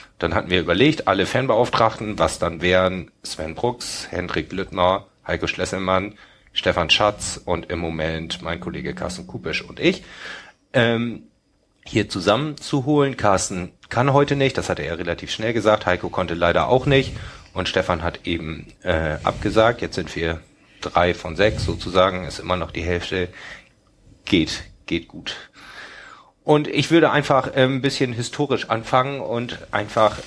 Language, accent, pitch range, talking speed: German, German, 90-120 Hz, 150 wpm